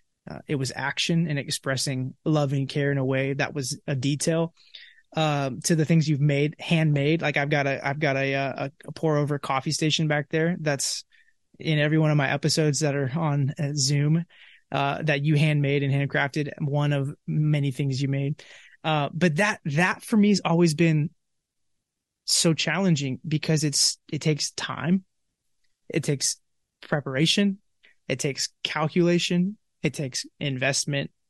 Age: 20-39